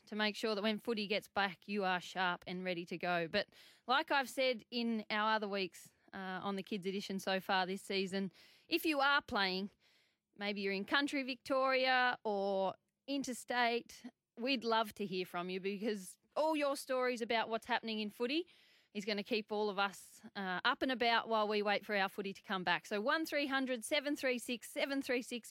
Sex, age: female, 20-39